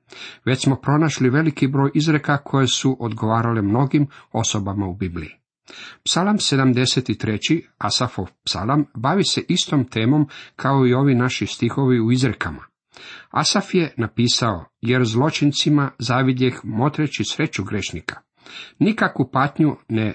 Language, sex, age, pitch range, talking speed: Croatian, male, 50-69, 115-150 Hz, 120 wpm